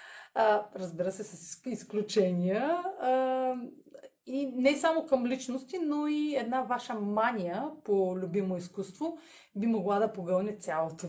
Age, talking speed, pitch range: 30-49, 130 wpm, 190-255 Hz